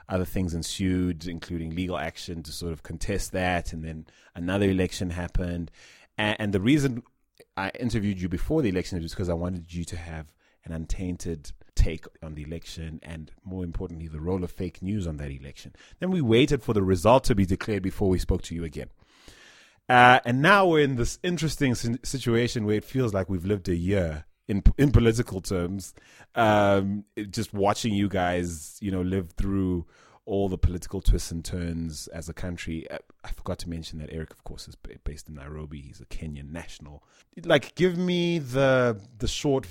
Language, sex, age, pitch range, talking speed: English, male, 30-49, 85-110 Hz, 185 wpm